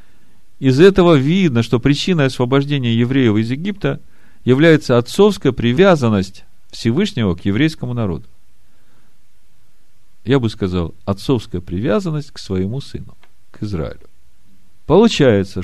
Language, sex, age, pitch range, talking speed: Russian, male, 50-69, 100-155 Hz, 105 wpm